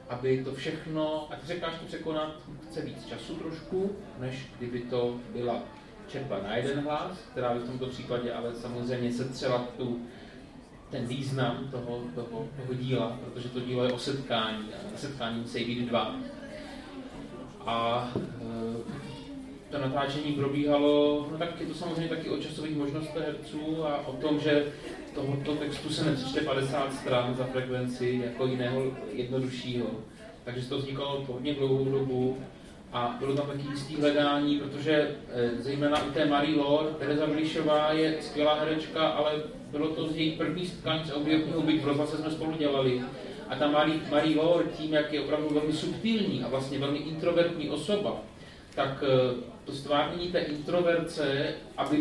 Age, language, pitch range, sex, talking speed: 30-49, Czech, 125-155 Hz, male, 150 wpm